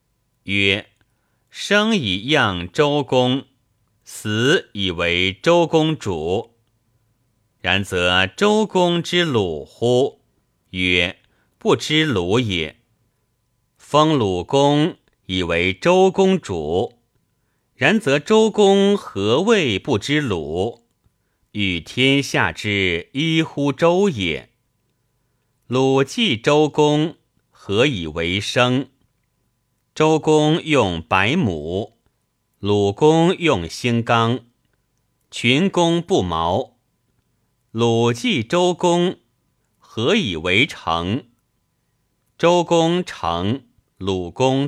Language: Chinese